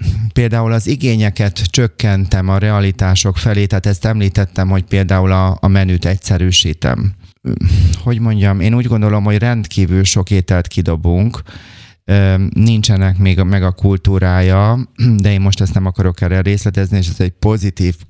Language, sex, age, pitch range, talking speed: Hungarian, male, 30-49, 95-110 Hz, 145 wpm